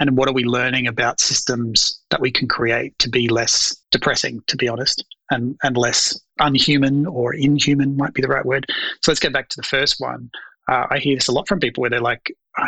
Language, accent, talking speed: English, Australian, 230 wpm